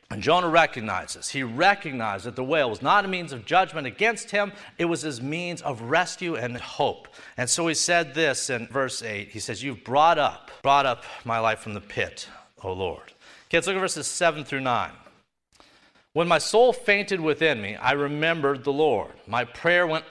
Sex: male